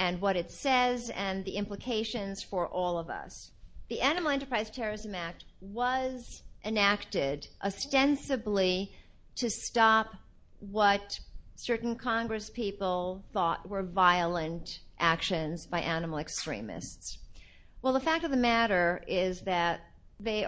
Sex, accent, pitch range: female, American, 190-240 Hz